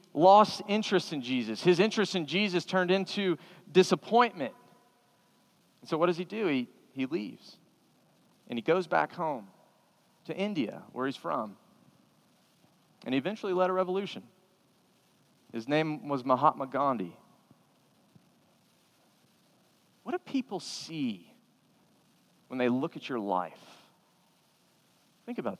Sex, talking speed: male, 125 wpm